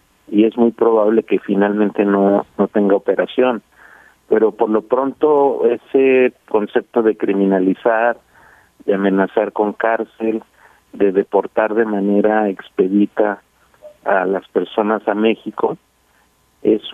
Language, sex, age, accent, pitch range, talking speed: Spanish, male, 50-69, Mexican, 100-115 Hz, 115 wpm